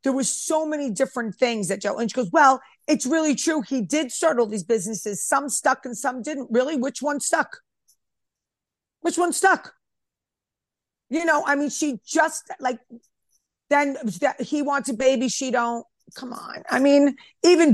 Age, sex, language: 40-59, female, English